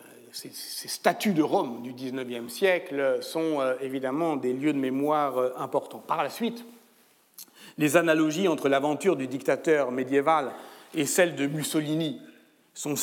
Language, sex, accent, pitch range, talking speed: French, male, French, 140-180 Hz, 135 wpm